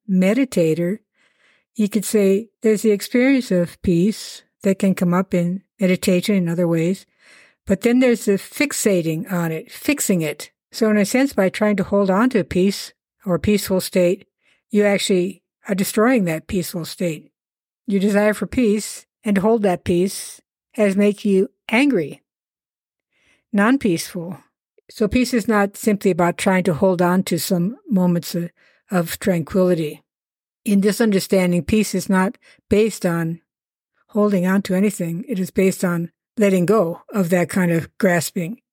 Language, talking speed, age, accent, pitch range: English, 155 wpm, 60-79, American, 175-210 Hz